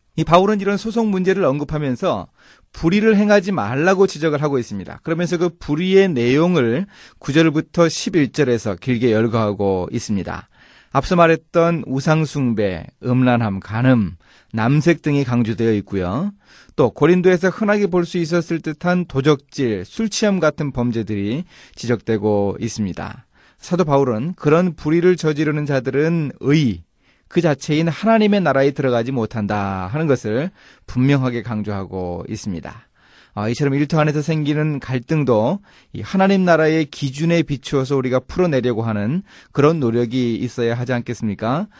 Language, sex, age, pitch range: Korean, male, 30-49, 120-170 Hz